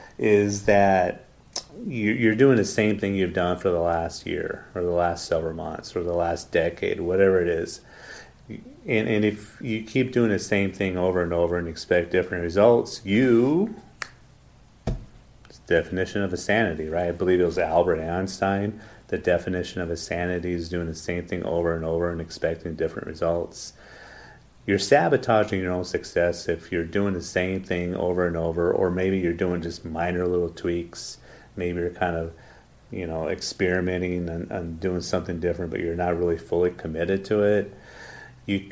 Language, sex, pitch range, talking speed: English, male, 85-100 Hz, 175 wpm